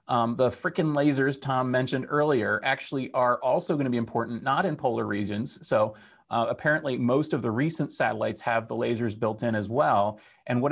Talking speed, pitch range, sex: 195 wpm, 115-150 Hz, male